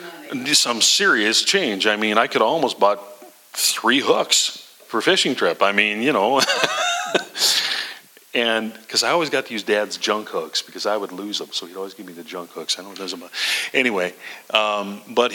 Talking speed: 200 wpm